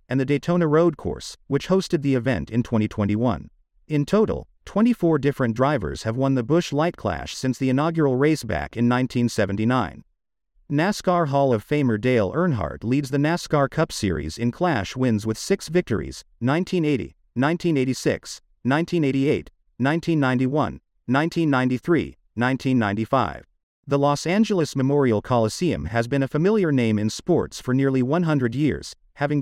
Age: 50-69